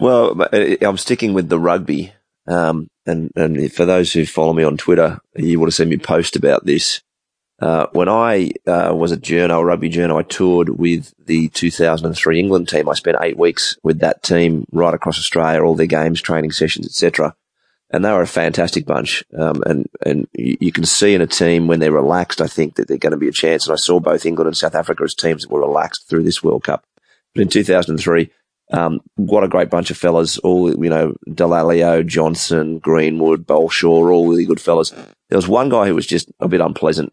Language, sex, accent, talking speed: English, male, Australian, 215 wpm